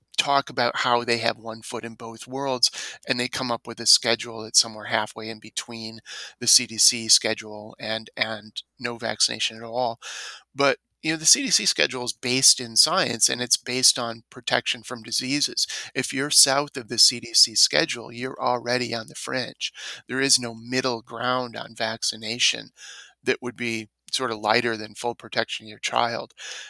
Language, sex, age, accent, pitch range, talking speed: English, male, 30-49, American, 115-130 Hz, 180 wpm